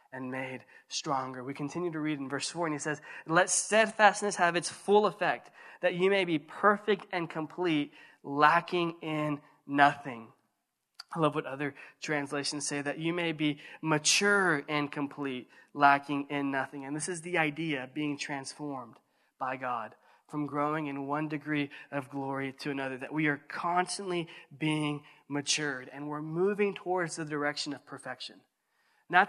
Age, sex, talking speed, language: 20-39, male, 160 wpm, English